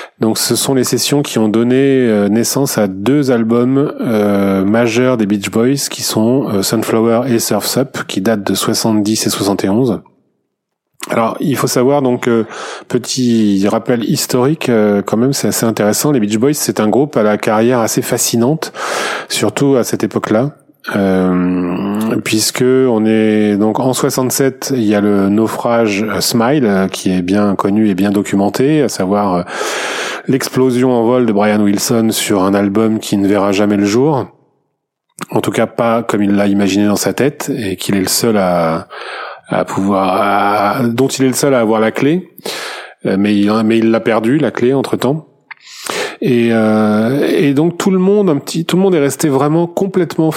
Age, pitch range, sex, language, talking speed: 30-49, 105-130 Hz, male, French, 180 wpm